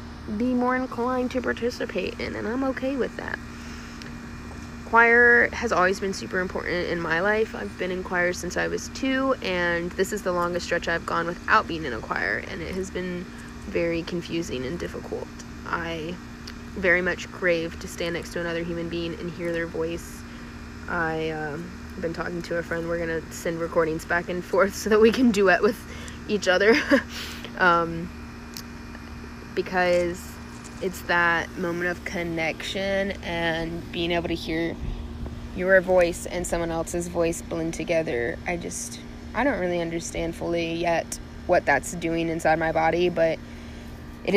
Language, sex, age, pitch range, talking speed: English, female, 20-39, 120-180 Hz, 165 wpm